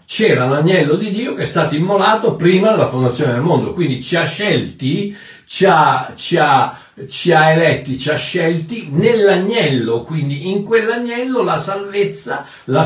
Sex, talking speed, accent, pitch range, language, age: male, 160 wpm, native, 140-205 Hz, Italian, 60-79